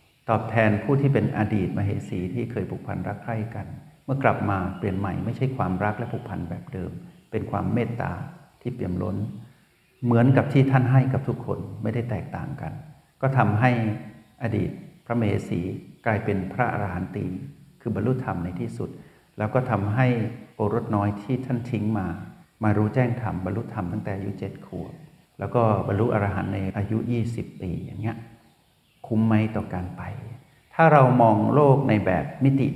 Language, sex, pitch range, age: Thai, male, 100-125 Hz, 60-79